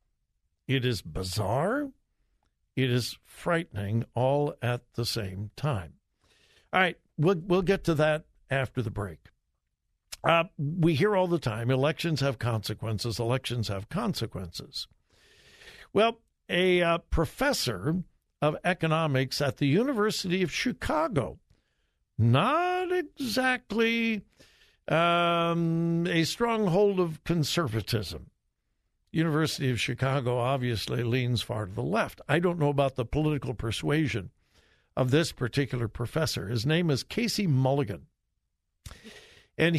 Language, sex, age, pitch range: English, male, 60-79, 120-175 Hz